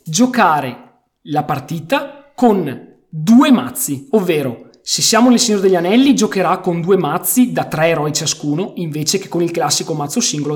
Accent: native